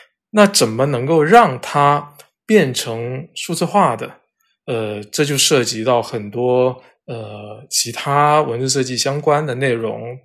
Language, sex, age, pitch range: Chinese, male, 20-39, 125-160 Hz